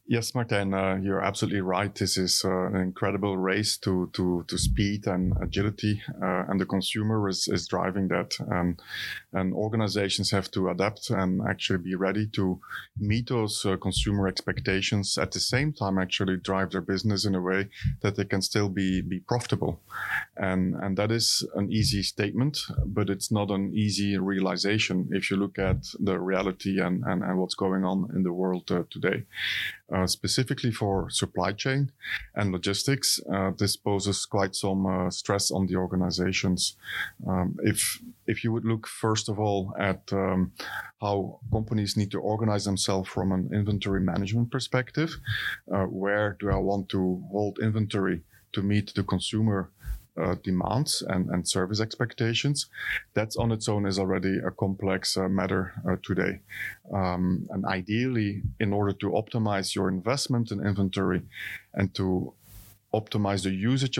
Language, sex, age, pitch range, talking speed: English, male, 30-49, 95-110 Hz, 165 wpm